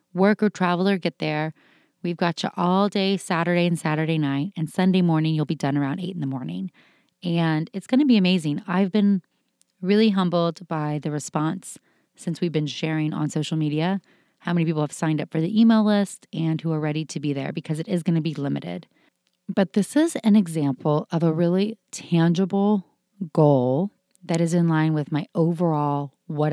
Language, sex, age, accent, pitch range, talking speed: English, female, 30-49, American, 155-195 Hz, 190 wpm